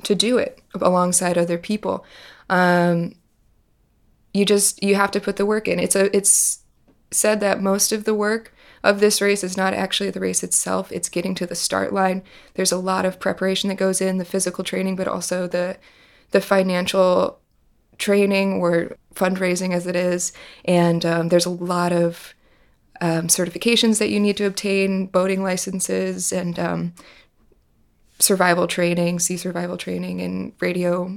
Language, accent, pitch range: English, American, 175-200 Hz